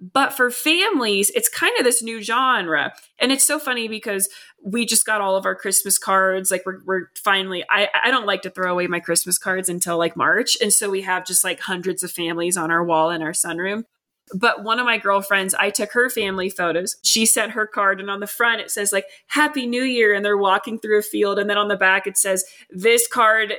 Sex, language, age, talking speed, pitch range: female, English, 20-39, 235 wpm, 190-245 Hz